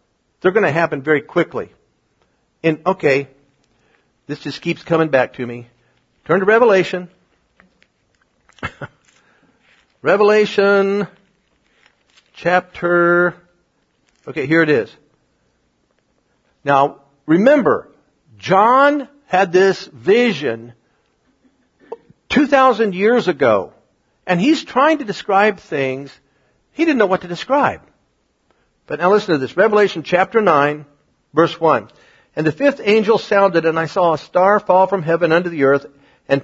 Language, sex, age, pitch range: English, male, 60-79, 155-200 Hz